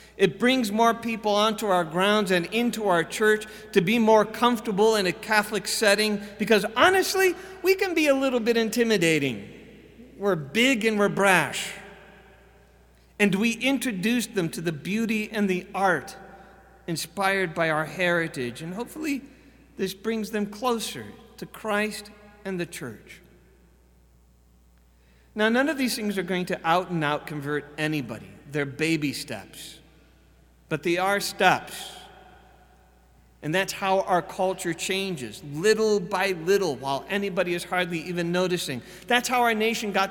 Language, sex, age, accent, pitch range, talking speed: English, male, 50-69, American, 175-215 Hz, 145 wpm